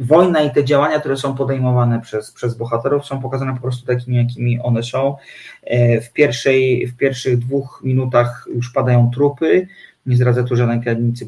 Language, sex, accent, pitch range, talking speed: Polish, male, native, 125-140 Hz, 170 wpm